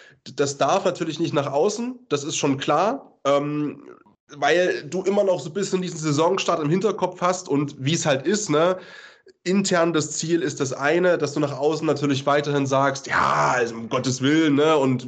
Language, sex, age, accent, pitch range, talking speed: German, male, 20-39, German, 135-160 Hz, 195 wpm